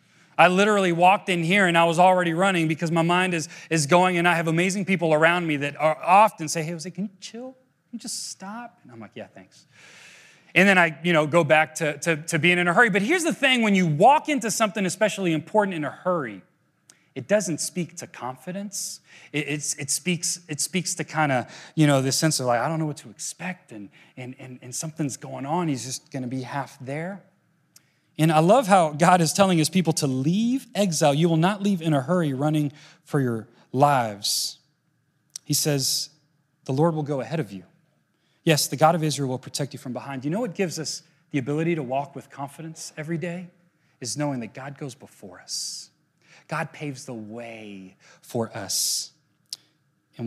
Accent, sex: American, male